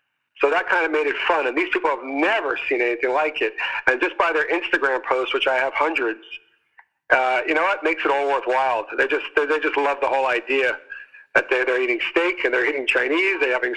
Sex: male